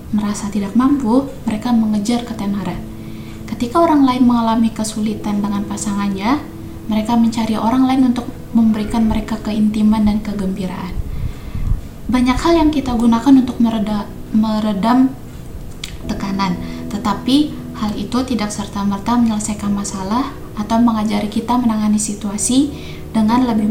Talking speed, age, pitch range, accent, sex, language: 115 wpm, 20-39, 205-240 Hz, native, female, Indonesian